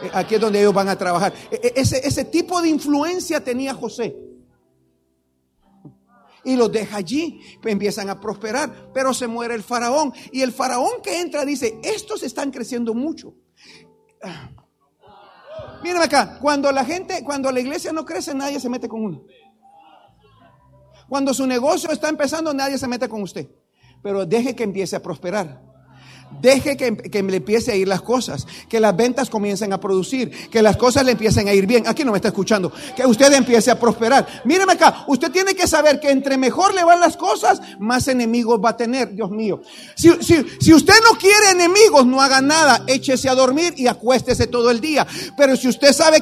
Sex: male